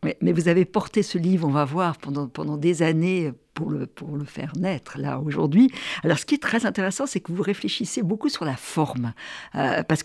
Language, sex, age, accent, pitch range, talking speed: French, female, 50-69, French, 160-215 Hz, 220 wpm